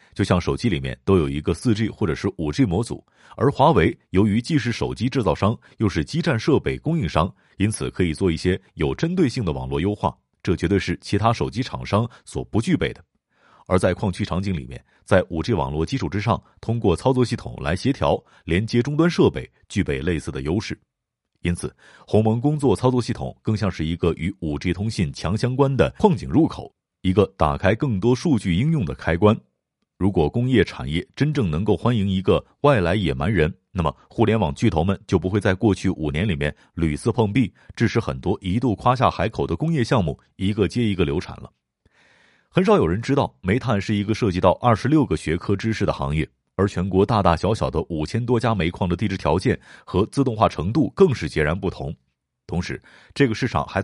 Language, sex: Chinese, male